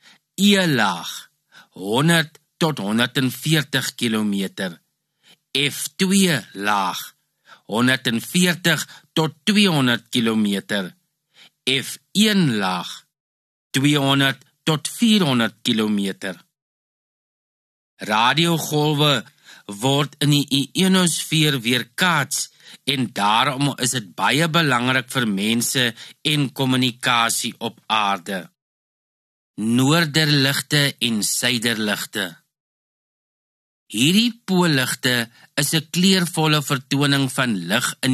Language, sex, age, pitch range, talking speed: English, male, 50-69, 120-155 Hz, 75 wpm